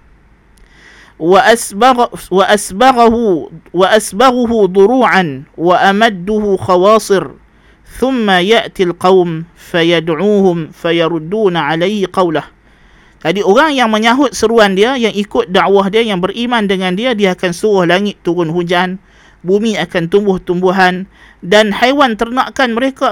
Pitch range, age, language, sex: 185-230 Hz, 50-69, Malay, male